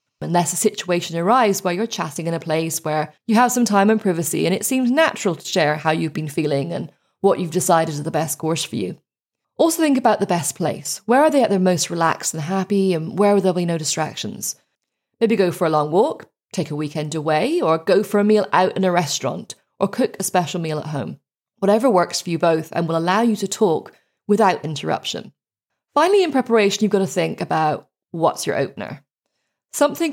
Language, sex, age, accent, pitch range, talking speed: English, female, 20-39, British, 165-215 Hz, 220 wpm